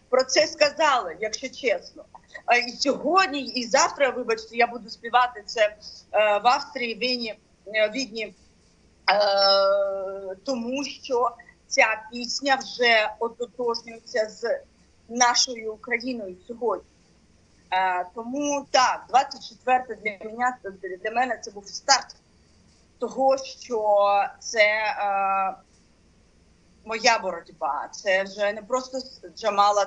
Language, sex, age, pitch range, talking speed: Ukrainian, female, 30-49, 190-245 Hz, 95 wpm